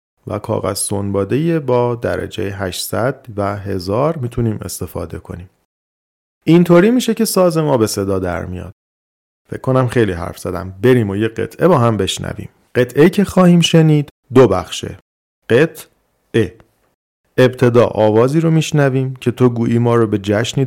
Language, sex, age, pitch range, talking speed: Persian, male, 40-59, 95-125 Hz, 145 wpm